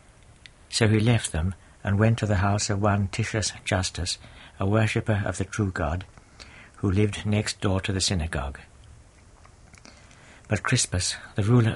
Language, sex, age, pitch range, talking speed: English, male, 60-79, 90-105 Hz, 155 wpm